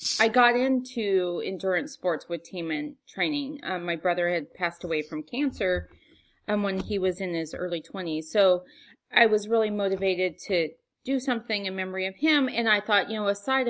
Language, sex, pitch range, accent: English, female, 180-245 Hz, American